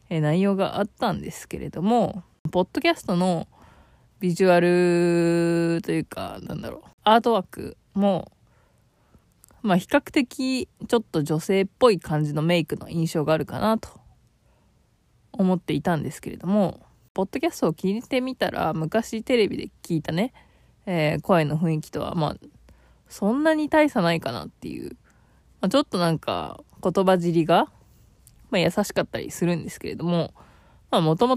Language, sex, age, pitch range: Japanese, female, 20-39, 165-225 Hz